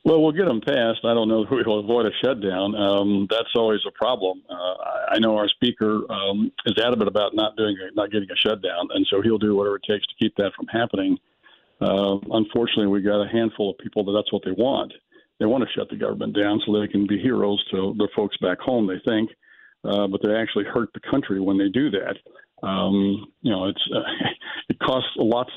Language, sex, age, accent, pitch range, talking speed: English, male, 50-69, American, 100-115 Hz, 225 wpm